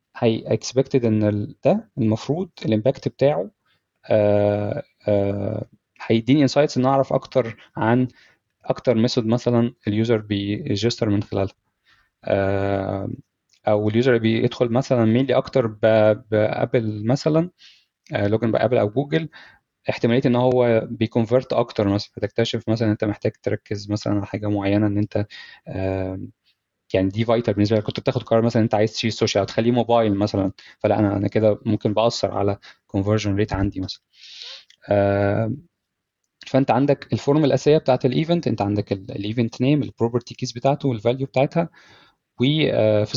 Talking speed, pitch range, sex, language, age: 130 wpm, 105-125 Hz, male, Arabic, 20-39